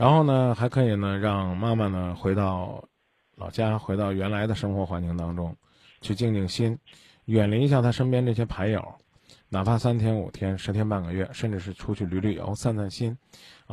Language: Chinese